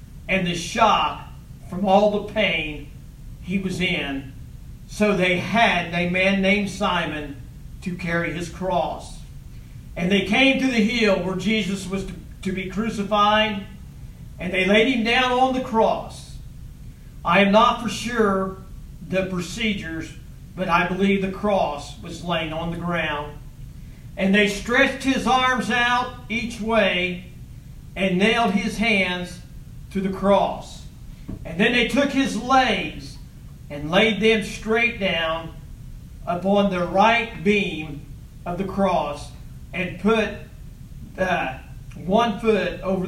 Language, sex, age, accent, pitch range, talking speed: English, male, 50-69, American, 170-220 Hz, 135 wpm